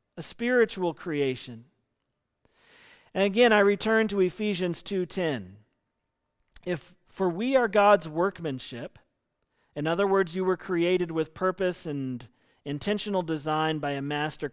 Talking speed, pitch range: 125 wpm, 155-205 Hz